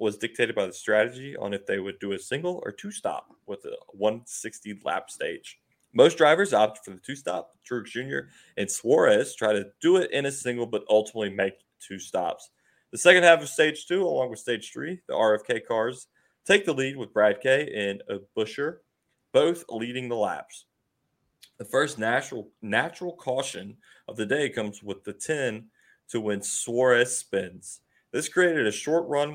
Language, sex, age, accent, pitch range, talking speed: English, male, 20-39, American, 105-150 Hz, 180 wpm